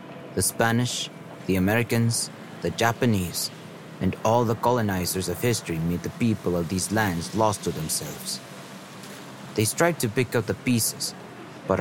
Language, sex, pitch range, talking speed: English, male, 95-130 Hz, 145 wpm